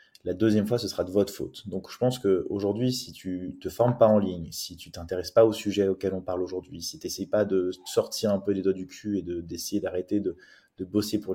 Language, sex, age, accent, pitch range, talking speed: French, male, 20-39, French, 95-105 Hz, 270 wpm